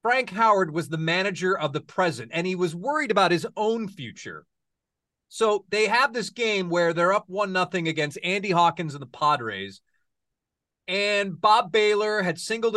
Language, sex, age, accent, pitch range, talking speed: English, male, 30-49, American, 150-205 Hz, 175 wpm